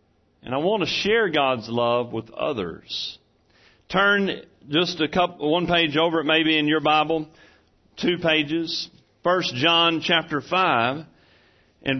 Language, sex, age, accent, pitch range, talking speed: English, male, 40-59, American, 145-225 Hz, 140 wpm